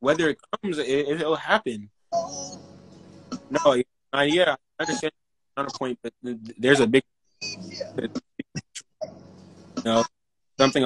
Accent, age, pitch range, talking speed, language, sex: American, 20-39, 135-215 Hz, 115 wpm, English, male